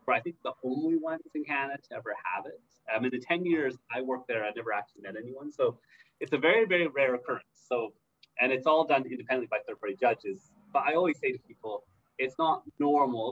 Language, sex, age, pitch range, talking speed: English, male, 30-49, 120-190 Hz, 225 wpm